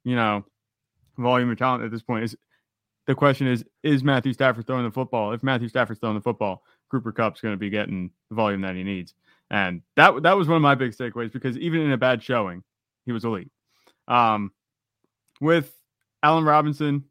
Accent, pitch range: American, 115-140 Hz